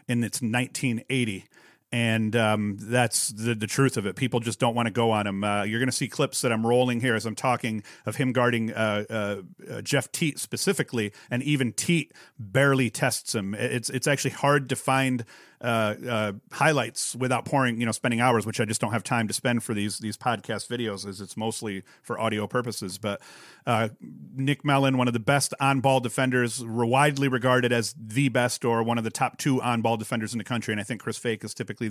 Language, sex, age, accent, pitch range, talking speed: English, male, 40-59, American, 115-135 Hz, 220 wpm